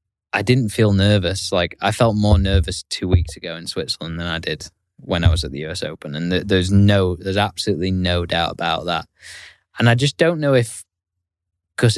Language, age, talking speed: English, 10-29, 205 wpm